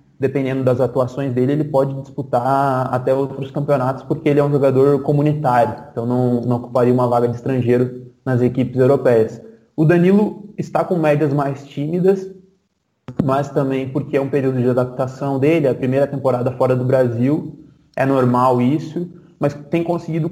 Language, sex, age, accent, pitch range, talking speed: Portuguese, male, 20-39, Brazilian, 125-145 Hz, 165 wpm